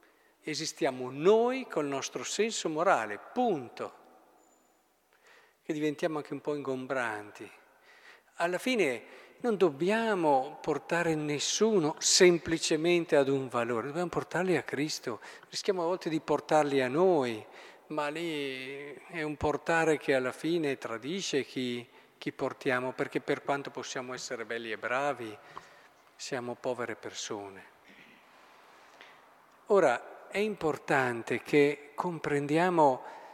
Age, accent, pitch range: 50-69, native, 140-200 Hz